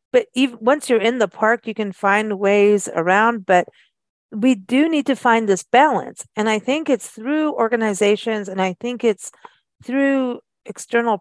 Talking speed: 170 wpm